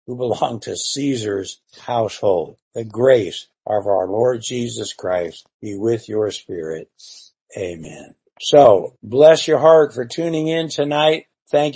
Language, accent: English, American